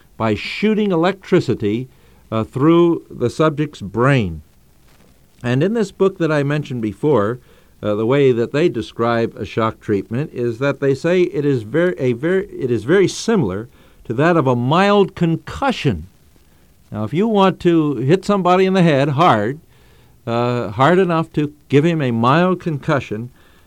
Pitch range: 115-160 Hz